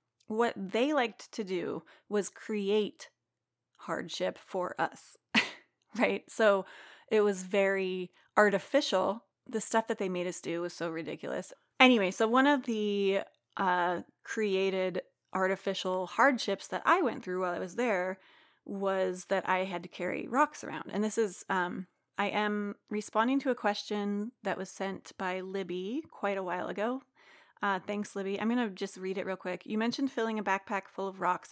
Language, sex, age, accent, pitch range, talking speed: English, female, 30-49, American, 185-220 Hz, 170 wpm